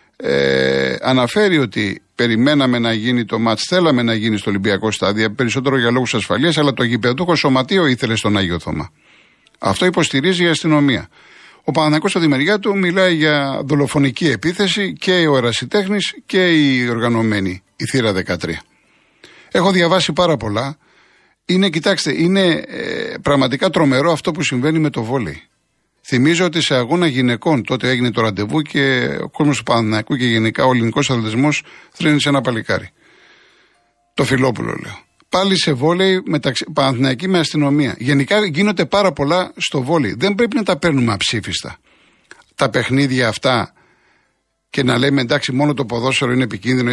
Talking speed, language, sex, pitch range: 150 wpm, Greek, male, 120-165 Hz